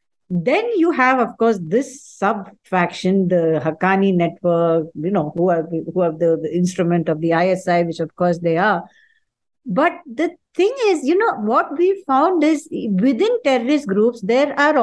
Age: 60-79